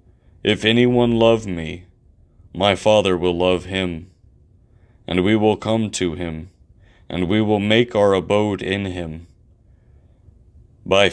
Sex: male